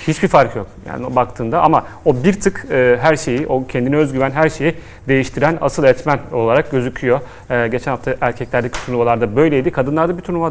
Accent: native